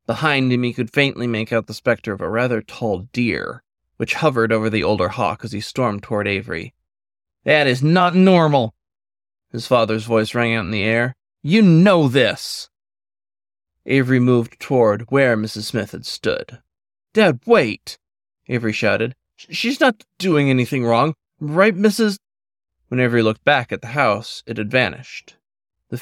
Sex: male